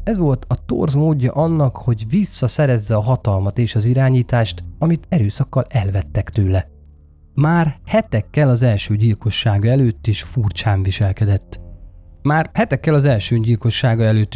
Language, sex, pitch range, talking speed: Hungarian, male, 100-140 Hz, 135 wpm